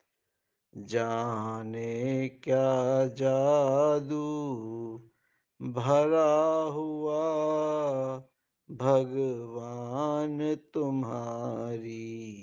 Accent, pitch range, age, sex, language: native, 115-145 Hz, 50-69, male, Hindi